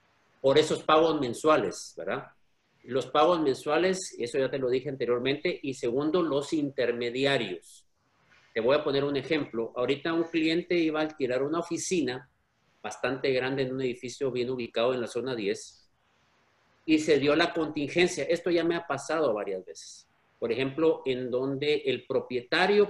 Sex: male